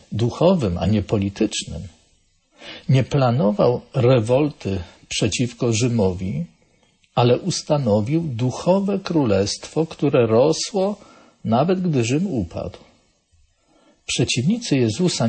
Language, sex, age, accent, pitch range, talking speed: Polish, male, 50-69, native, 105-165 Hz, 80 wpm